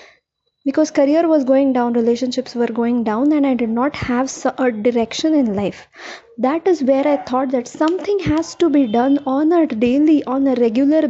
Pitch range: 250-310 Hz